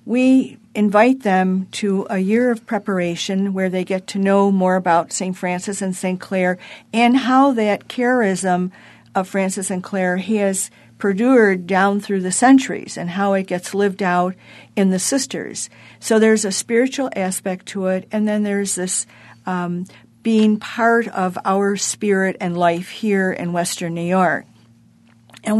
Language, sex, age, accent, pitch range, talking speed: English, female, 50-69, American, 185-220 Hz, 160 wpm